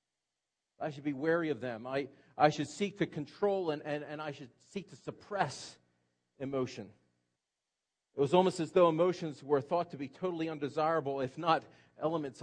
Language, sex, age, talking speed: English, male, 40-59, 175 wpm